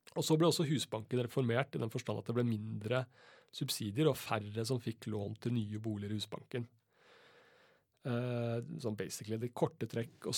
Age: 30-49